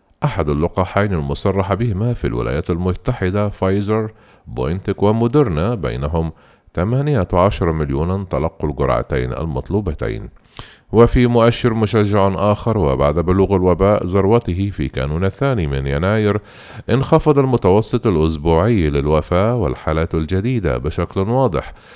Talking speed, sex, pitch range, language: 100 wpm, male, 80-115 Hz, Arabic